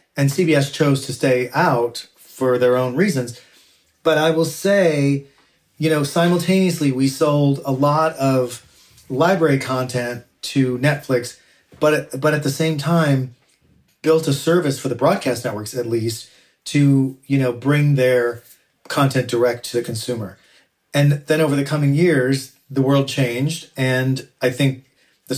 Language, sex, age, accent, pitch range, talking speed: English, male, 40-59, American, 125-145 Hz, 155 wpm